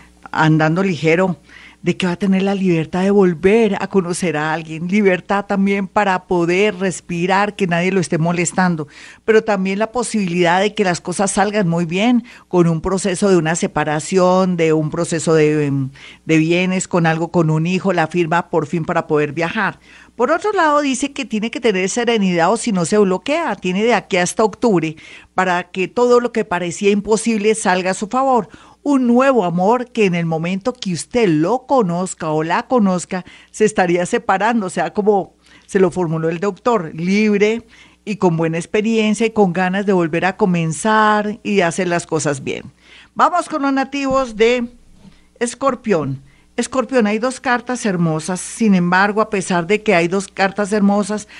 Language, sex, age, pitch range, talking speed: Spanish, female, 50-69, 175-215 Hz, 180 wpm